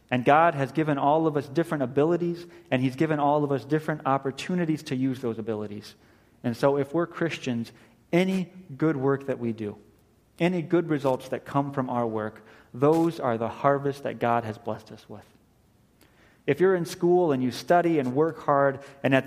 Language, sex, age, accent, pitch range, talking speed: English, male, 30-49, American, 120-155 Hz, 195 wpm